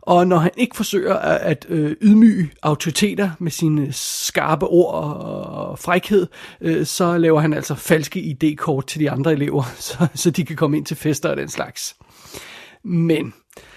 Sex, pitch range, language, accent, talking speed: male, 150-175 Hz, Danish, native, 155 wpm